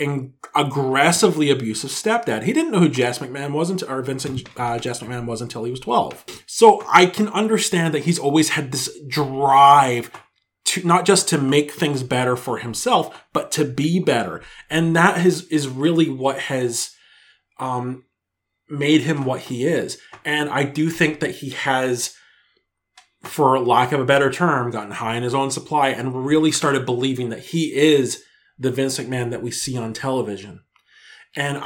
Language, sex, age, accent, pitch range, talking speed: English, male, 30-49, American, 125-155 Hz, 175 wpm